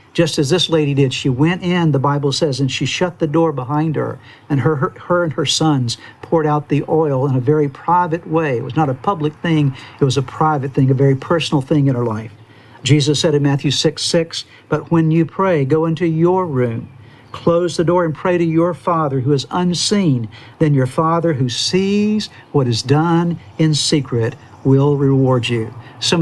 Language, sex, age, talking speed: English, male, 60-79, 205 wpm